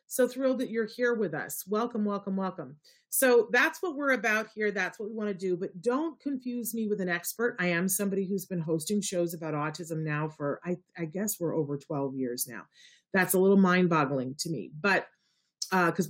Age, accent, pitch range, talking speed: 40-59, American, 155-205 Hz, 215 wpm